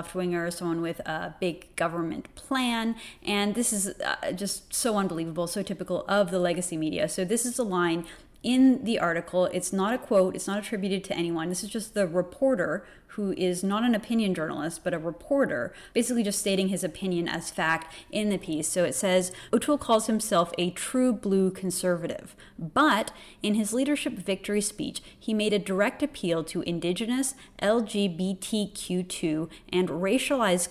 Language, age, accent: English, 30-49, American